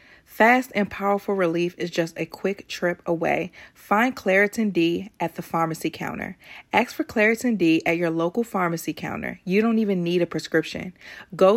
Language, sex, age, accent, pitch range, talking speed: English, female, 30-49, American, 185-230 Hz, 170 wpm